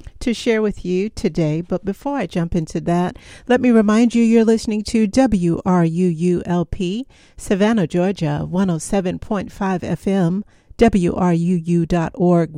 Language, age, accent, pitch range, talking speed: English, 50-69, American, 170-220 Hz, 115 wpm